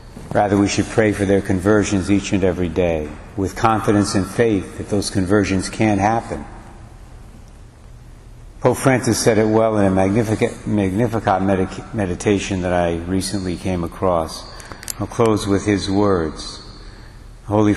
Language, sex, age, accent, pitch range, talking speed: English, male, 60-79, American, 100-115 Hz, 140 wpm